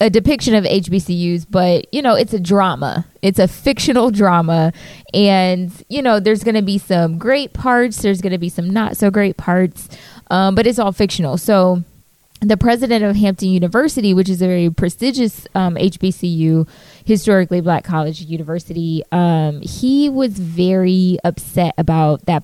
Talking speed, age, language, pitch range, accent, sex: 165 wpm, 20-39, English, 180-210 Hz, American, female